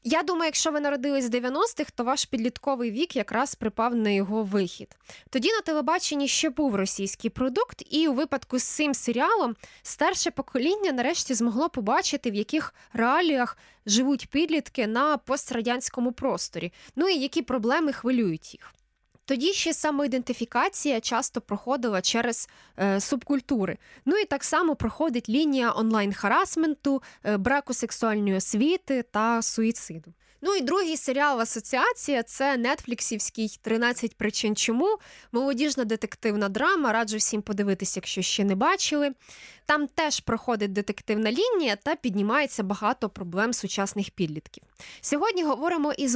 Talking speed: 135 wpm